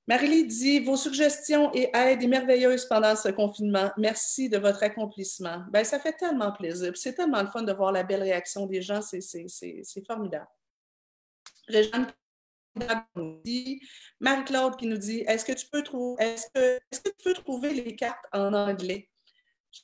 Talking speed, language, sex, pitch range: 180 wpm, French, female, 200-265 Hz